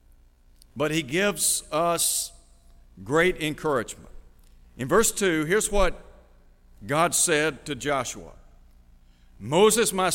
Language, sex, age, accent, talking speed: English, male, 60-79, American, 100 wpm